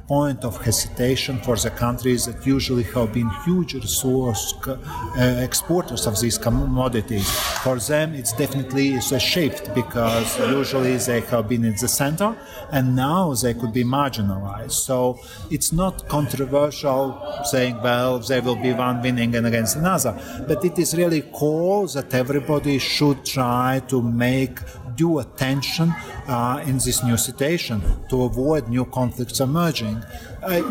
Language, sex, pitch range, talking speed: English, male, 115-145 Hz, 145 wpm